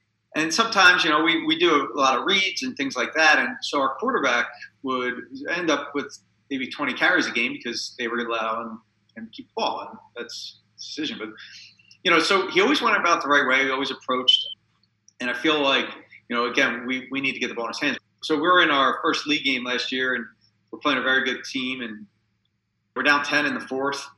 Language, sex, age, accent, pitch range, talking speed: English, male, 40-59, American, 115-150 Hz, 240 wpm